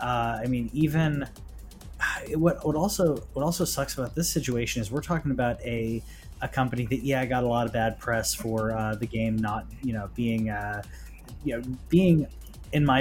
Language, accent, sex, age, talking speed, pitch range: English, American, male, 20-39, 195 wpm, 115-145 Hz